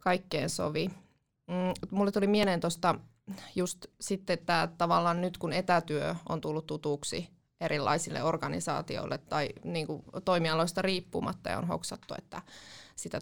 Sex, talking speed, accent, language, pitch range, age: female, 125 wpm, native, Finnish, 160-180 Hz, 20-39